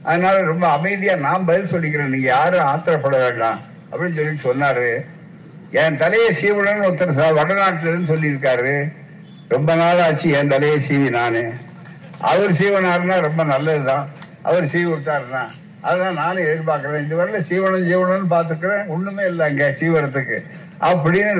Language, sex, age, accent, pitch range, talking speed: Tamil, male, 60-79, native, 155-185 Hz, 125 wpm